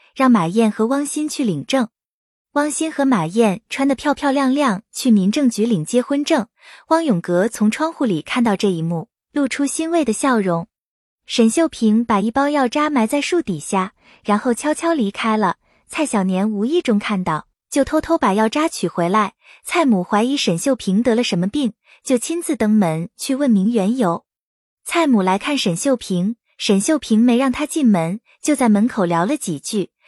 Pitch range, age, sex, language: 200-280 Hz, 20-39, female, Chinese